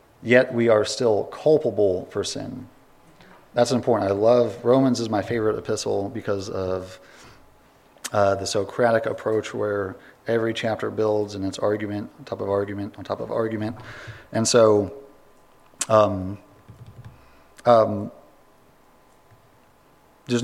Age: 40-59